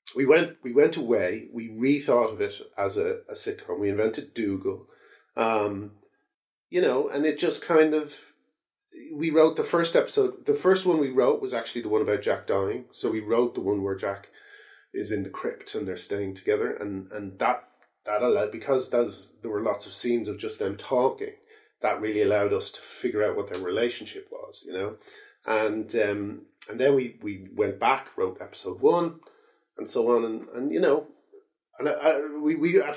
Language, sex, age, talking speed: English, male, 40-59, 200 wpm